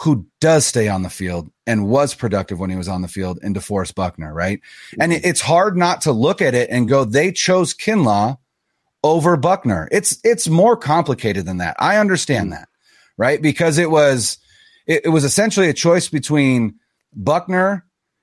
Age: 30-49